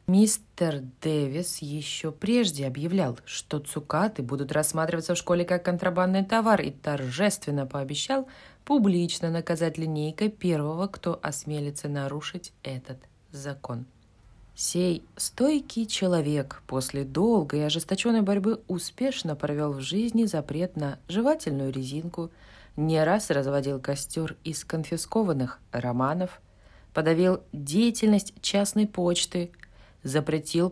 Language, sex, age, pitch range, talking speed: Russian, female, 20-39, 145-185 Hz, 105 wpm